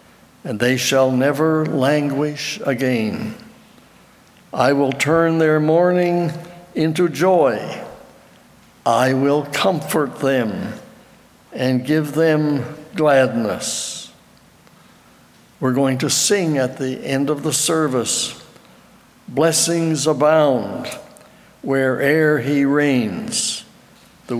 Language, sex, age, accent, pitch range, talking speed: English, male, 60-79, American, 135-160 Hz, 90 wpm